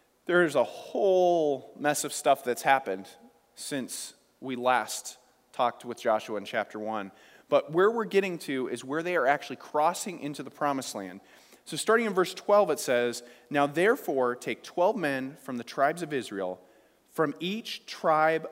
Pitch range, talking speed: 140-200 Hz, 170 wpm